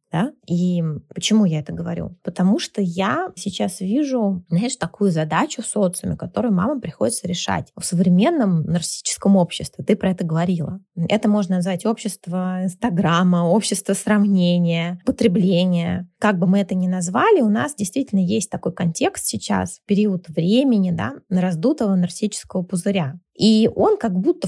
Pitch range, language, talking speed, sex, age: 175-215 Hz, Russian, 145 wpm, female, 20-39